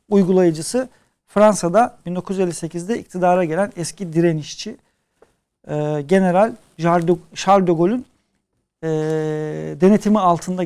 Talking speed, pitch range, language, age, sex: 85 wpm, 165-220 Hz, Turkish, 50-69, male